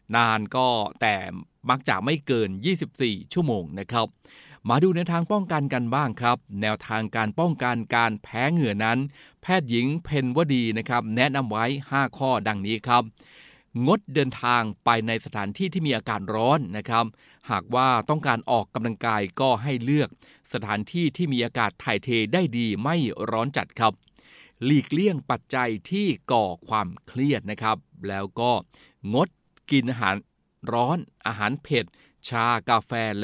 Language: Thai